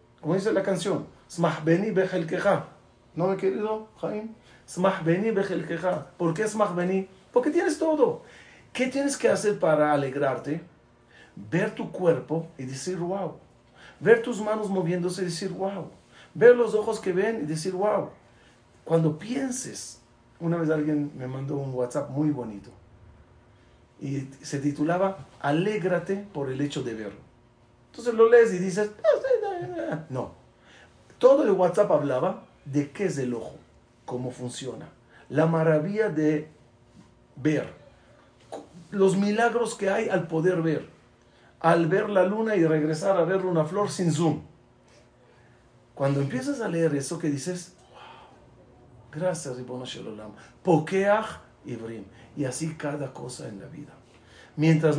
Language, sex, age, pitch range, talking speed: Spanish, male, 40-59, 130-195 Hz, 130 wpm